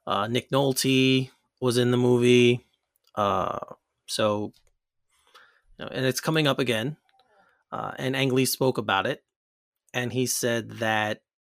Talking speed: 125 wpm